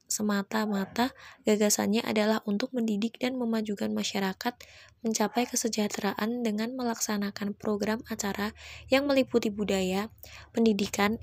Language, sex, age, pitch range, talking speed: Indonesian, female, 20-39, 210-240 Hz, 95 wpm